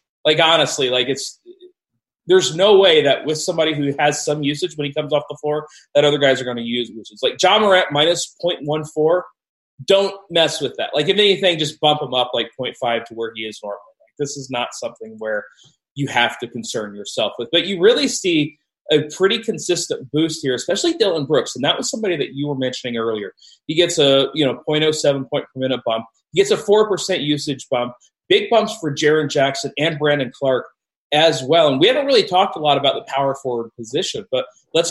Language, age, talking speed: English, 20-39, 210 wpm